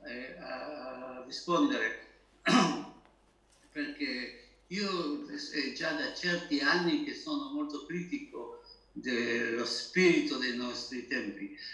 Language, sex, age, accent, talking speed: Italian, male, 60-79, native, 85 wpm